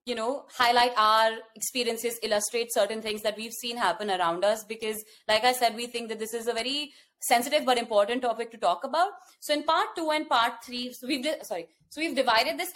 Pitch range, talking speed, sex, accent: 225-290 Hz, 215 wpm, female, Indian